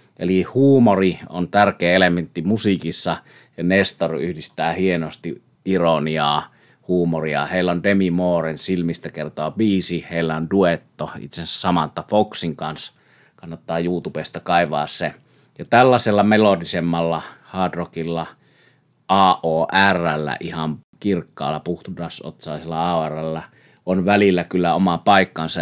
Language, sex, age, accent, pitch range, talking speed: Finnish, male, 30-49, native, 80-95 Hz, 110 wpm